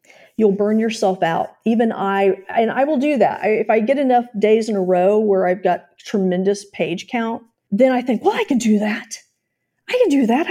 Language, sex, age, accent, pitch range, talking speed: English, female, 40-59, American, 185-235 Hz, 210 wpm